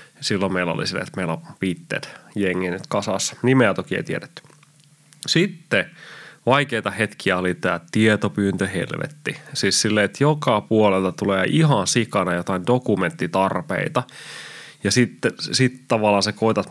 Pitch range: 95-130 Hz